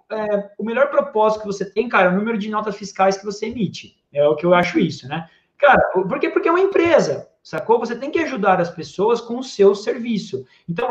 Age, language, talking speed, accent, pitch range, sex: 20-39, Portuguese, 235 wpm, Brazilian, 175-235 Hz, male